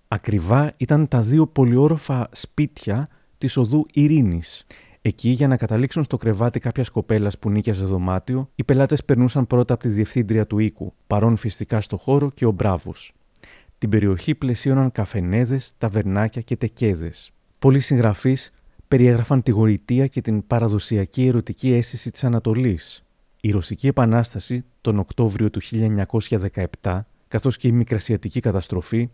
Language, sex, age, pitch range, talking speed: Greek, male, 30-49, 105-130 Hz, 140 wpm